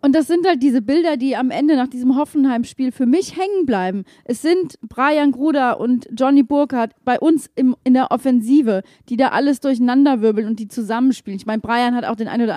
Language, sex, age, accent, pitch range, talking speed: German, female, 30-49, German, 245-300 Hz, 210 wpm